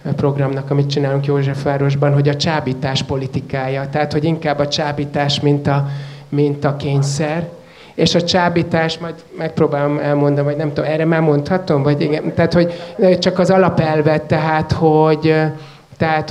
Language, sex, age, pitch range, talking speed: Hungarian, male, 30-49, 140-150 Hz, 145 wpm